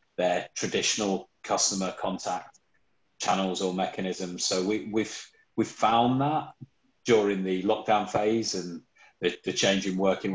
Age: 30-49